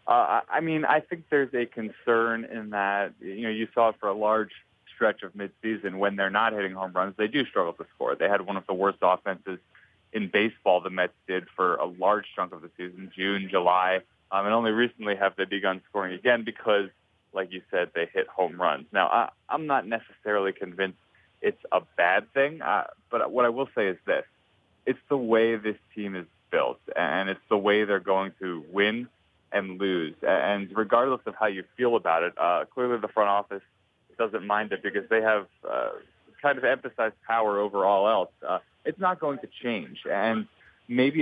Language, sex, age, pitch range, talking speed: English, male, 30-49, 95-115 Hz, 200 wpm